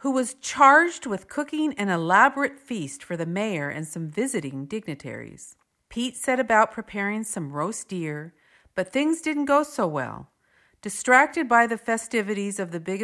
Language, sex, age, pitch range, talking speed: English, female, 50-69, 165-235 Hz, 160 wpm